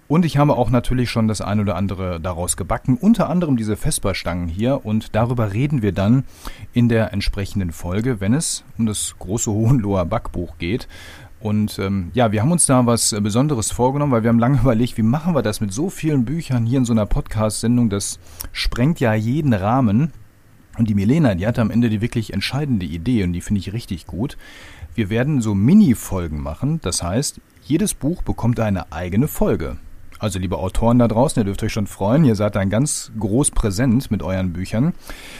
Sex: male